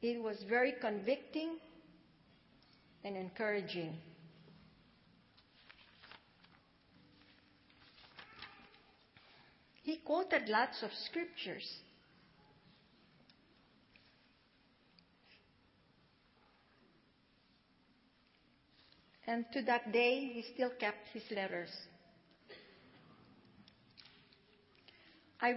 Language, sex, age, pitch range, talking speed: English, female, 50-69, 195-260 Hz, 50 wpm